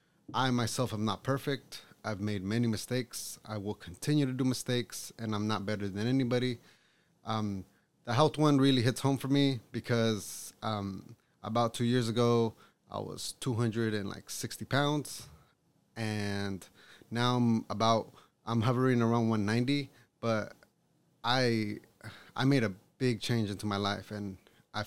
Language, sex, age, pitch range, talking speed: English, male, 20-39, 105-125 Hz, 145 wpm